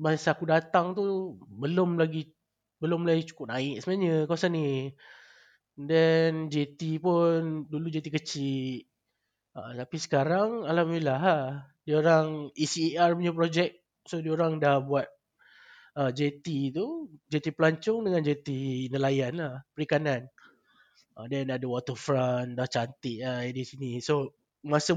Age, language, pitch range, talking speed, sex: 20-39, Malay, 140-175 Hz, 130 wpm, male